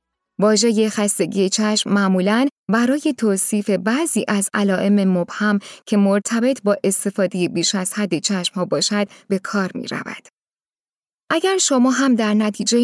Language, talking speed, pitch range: Persian, 135 wpm, 185-220 Hz